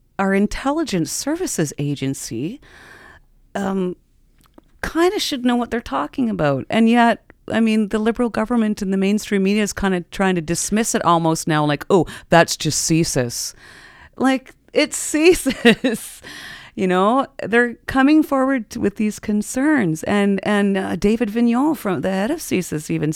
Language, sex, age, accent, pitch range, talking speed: English, female, 40-59, American, 165-220 Hz, 155 wpm